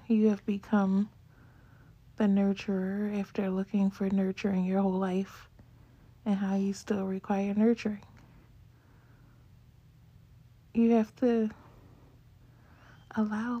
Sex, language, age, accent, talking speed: female, English, 20-39, American, 95 wpm